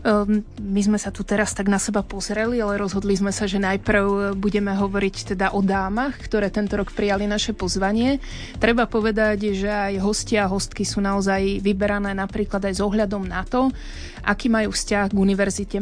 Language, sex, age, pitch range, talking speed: Slovak, female, 30-49, 200-220 Hz, 180 wpm